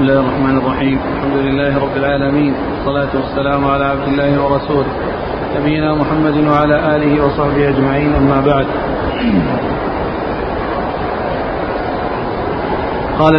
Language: Arabic